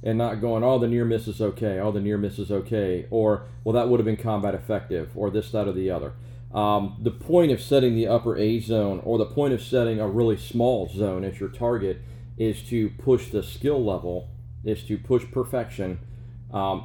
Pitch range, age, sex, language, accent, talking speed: 100-120 Hz, 40-59, male, English, American, 215 wpm